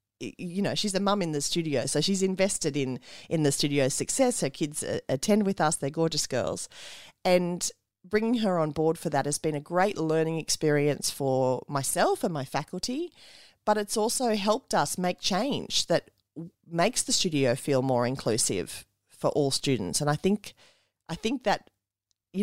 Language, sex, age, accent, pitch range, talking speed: English, female, 40-59, Australian, 140-190 Hz, 180 wpm